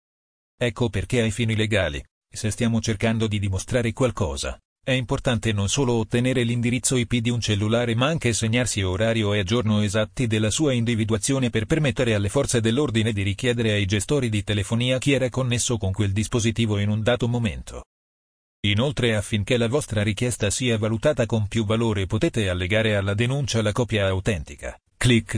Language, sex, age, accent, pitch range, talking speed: Italian, male, 40-59, native, 105-120 Hz, 165 wpm